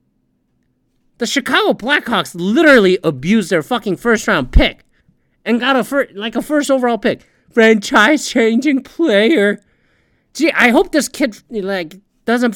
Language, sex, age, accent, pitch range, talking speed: English, male, 30-49, American, 135-225 Hz, 130 wpm